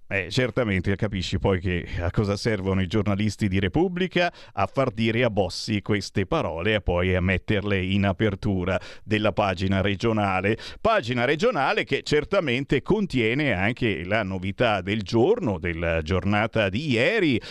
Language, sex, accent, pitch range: Italian, male, native, 100-160 Hz